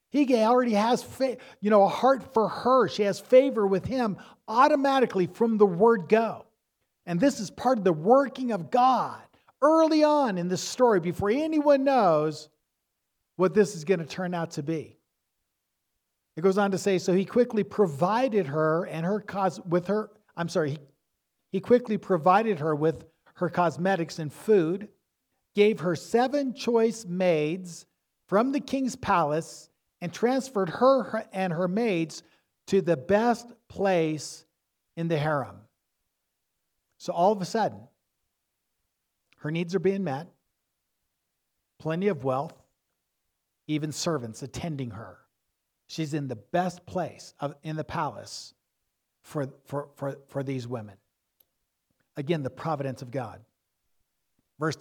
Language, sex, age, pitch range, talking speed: English, male, 50-69, 155-215 Hz, 145 wpm